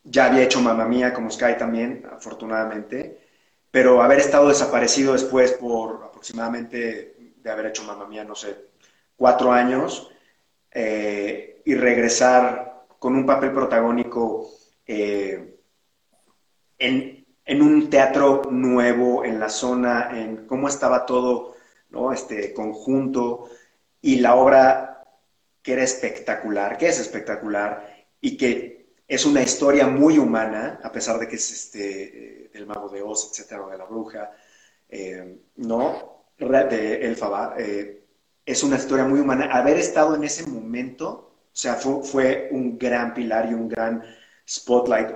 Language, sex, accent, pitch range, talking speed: Spanish, male, Mexican, 110-135 Hz, 140 wpm